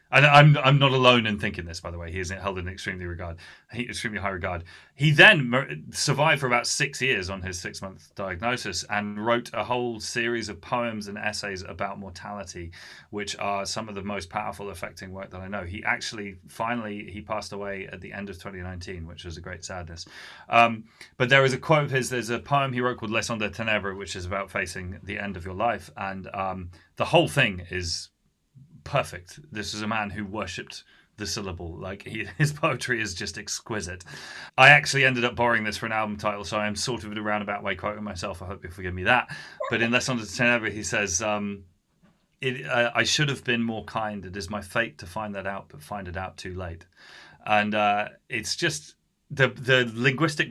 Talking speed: 215 wpm